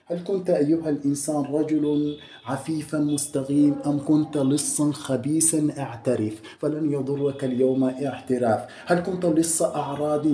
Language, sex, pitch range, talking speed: Arabic, male, 150-165 Hz, 115 wpm